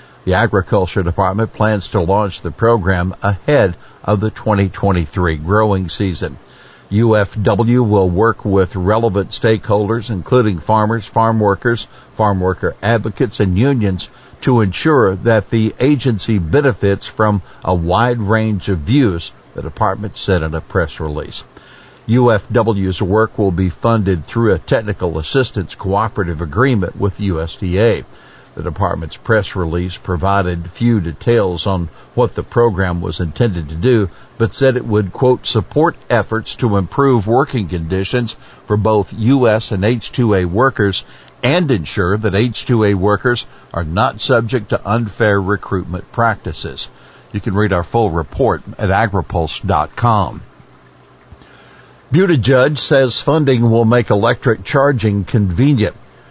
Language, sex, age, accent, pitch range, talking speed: English, male, 60-79, American, 95-120 Hz, 130 wpm